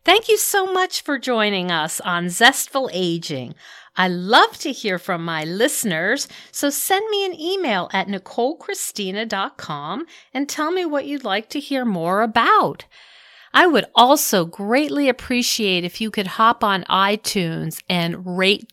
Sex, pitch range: female, 175-250 Hz